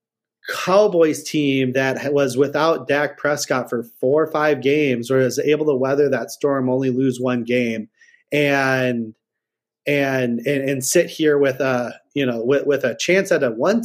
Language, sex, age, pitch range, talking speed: English, male, 30-49, 130-165 Hz, 175 wpm